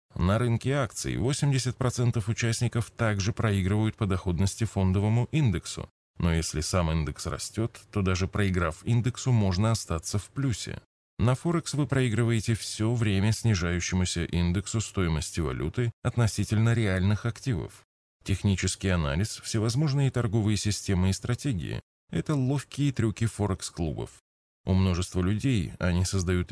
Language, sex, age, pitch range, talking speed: Russian, male, 20-39, 90-115 Hz, 120 wpm